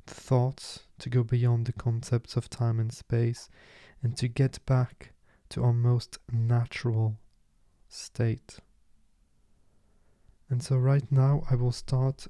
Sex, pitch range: male, 110-130 Hz